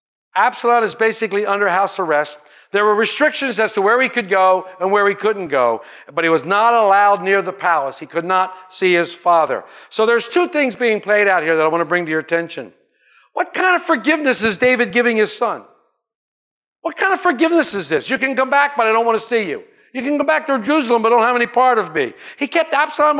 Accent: American